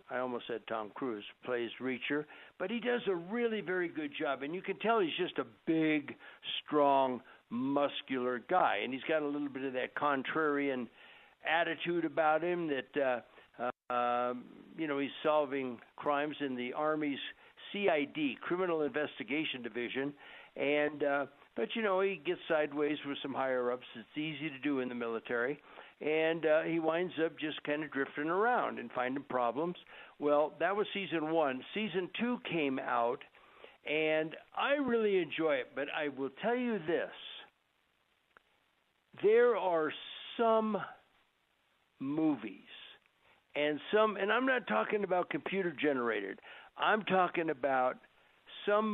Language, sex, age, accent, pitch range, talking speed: English, male, 60-79, American, 140-195 Hz, 150 wpm